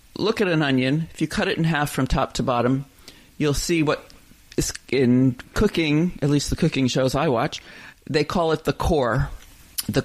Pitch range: 125-150 Hz